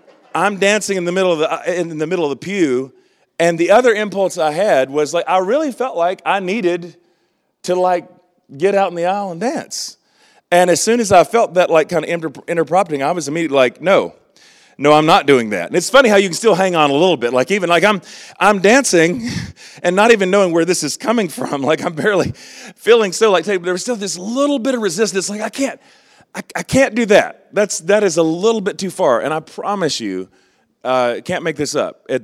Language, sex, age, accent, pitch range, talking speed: English, male, 40-59, American, 130-185 Hz, 230 wpm